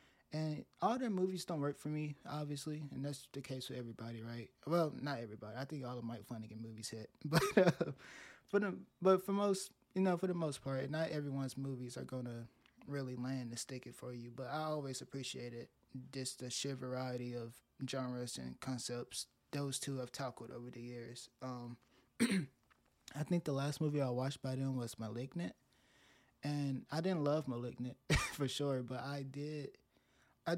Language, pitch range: English, 125-145 Hz